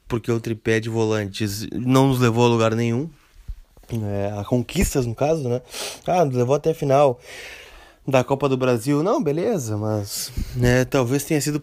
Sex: male